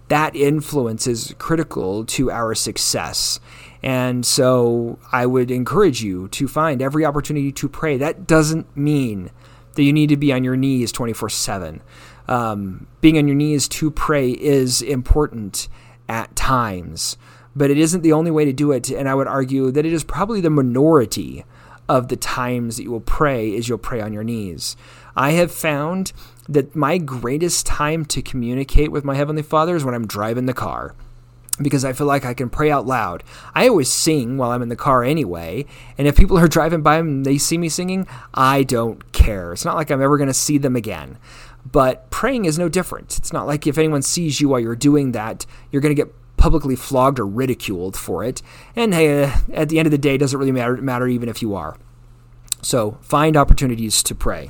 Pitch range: 120-150 Hz